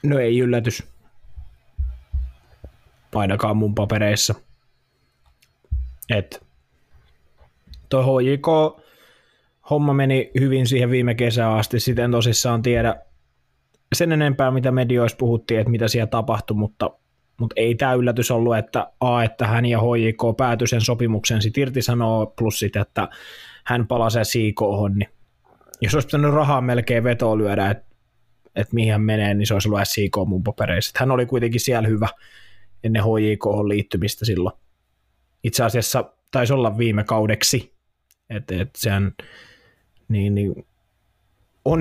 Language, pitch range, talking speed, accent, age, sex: Finnish, 100-120 Hz, 130 wpm, native, 20-39, male